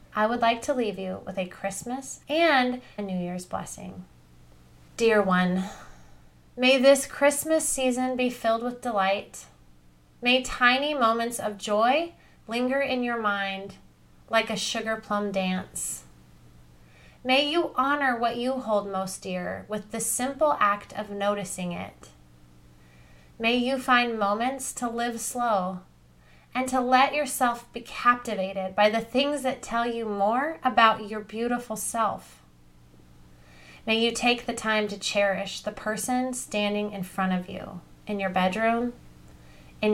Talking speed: 145 wpm